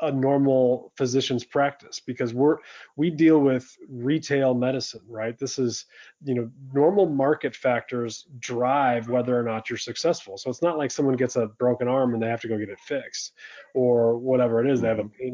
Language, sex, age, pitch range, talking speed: English, male, 30-49, 120-145 Hz, 195 wpm